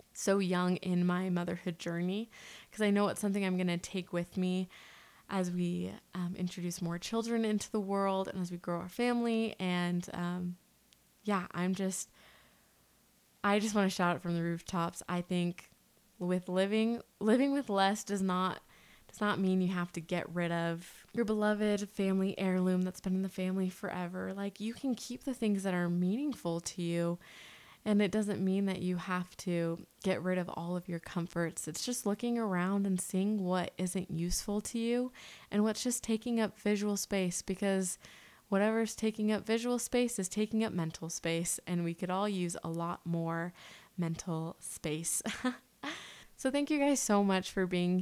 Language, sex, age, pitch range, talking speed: English, female, 20-39, 175-205 Hz, 185 wpm